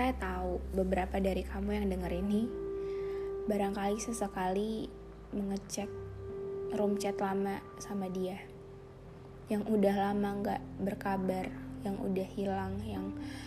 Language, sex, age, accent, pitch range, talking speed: Indonesian, female, 20-39, native, 130-210 Hz, 110 wpm